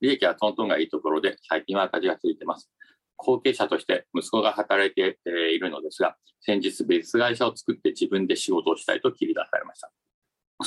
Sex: male